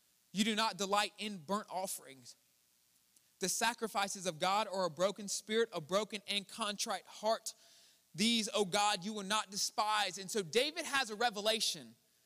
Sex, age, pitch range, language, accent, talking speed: male, 20-39, 205-255 Hz, English, American, 160 wpm